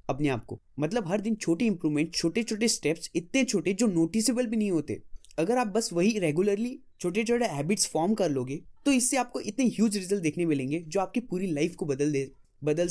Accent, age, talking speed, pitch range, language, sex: native, 20-39, 205 wpm, 155-225 Hz, Hindi, male